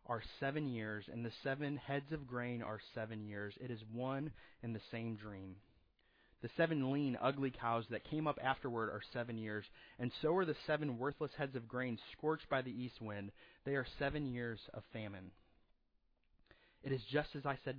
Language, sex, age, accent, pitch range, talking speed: English, male, 30-49, American, 110-140 Hz, 190 wpm